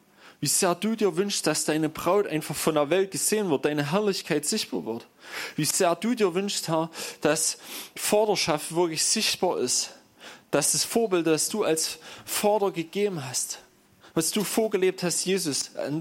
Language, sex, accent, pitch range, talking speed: German, male, German, 160-200 Hz, 165 wpm